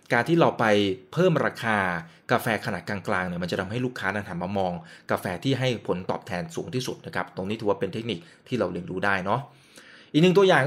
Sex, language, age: male, Thai, 20-39